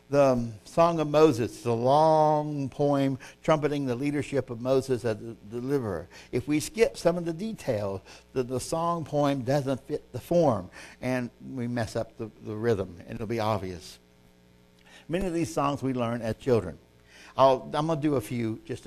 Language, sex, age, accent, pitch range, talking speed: English, male, 60-79, American, 115-155 Hz, 185 wpm